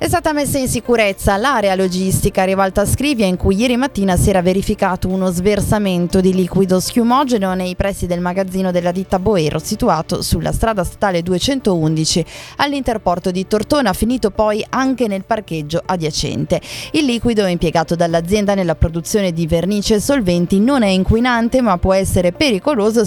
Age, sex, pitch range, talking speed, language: 20-39, female, 180-230 Hz, 155 wpm, Italian